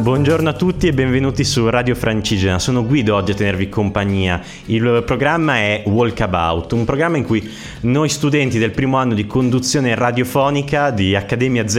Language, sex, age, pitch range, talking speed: Italian, male, 30-49, 105-135 Hz, 165 wpm